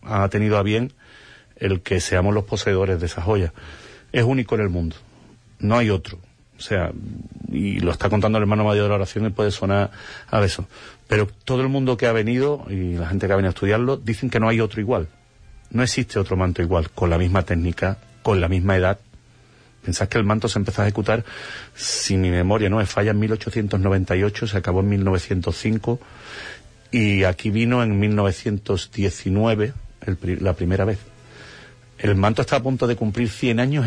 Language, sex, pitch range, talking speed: Spanish, male, 95-120 Hz, 195 wpm